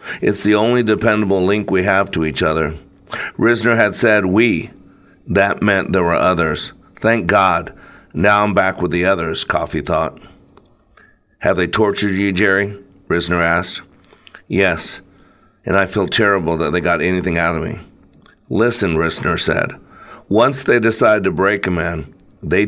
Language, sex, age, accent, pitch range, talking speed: English, male, 50-69, American, 85-105 Hz, 155 wpm